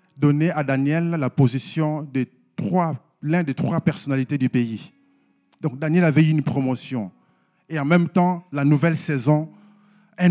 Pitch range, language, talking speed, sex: 145-195 Hz, French, 150 wpm, male